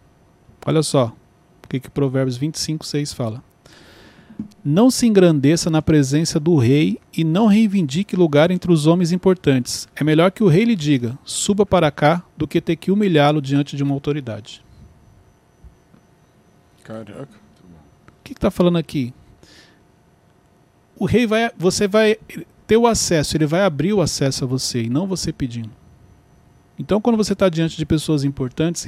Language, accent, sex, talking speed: Portuguese, Brazilian, male, 160 wpm